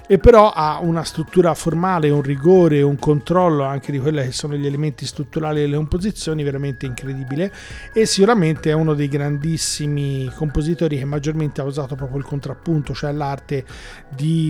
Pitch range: 145-175 Hz